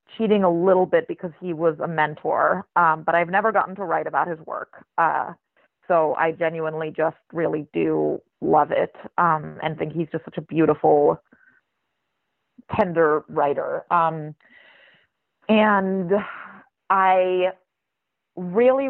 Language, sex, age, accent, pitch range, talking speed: English, female, 30-49, American, 160-185 Hz, 135 wpm